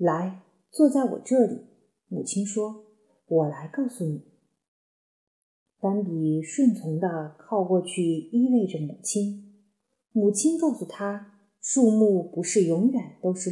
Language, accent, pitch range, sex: Chinese, native, 190-255 Hz, female